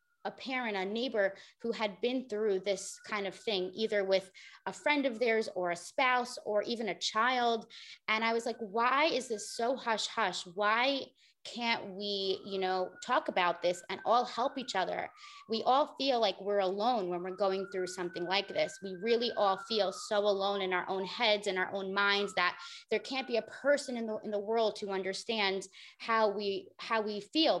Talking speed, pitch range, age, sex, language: 200 wpm, 190-230 Hz, 20-39, female, English